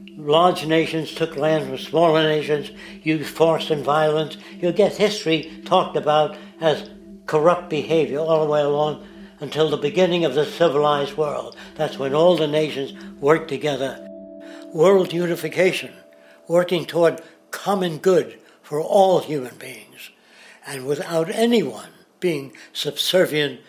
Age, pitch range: 60-79, 145-180 Hz